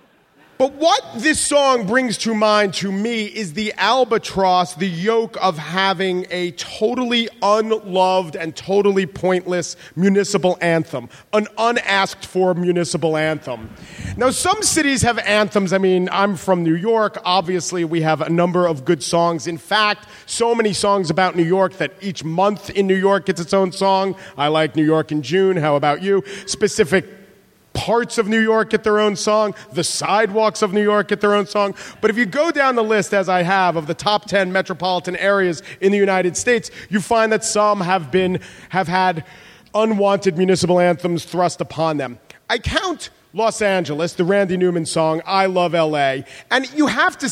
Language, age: English, 40-59